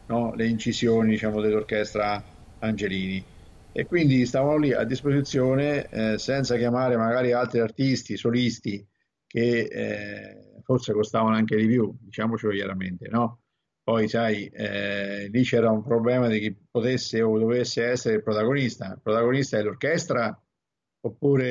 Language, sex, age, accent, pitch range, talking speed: Italian, male, 50-69, native, 105-125 Hz, 135 wpm